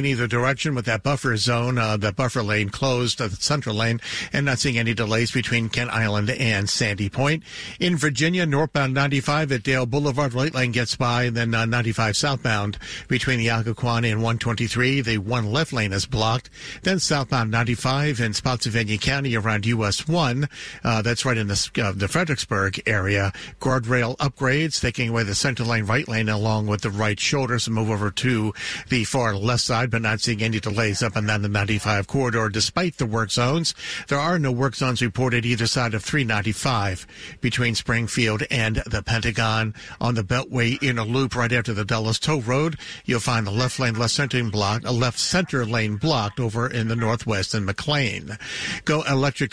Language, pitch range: English, 110-135 Hz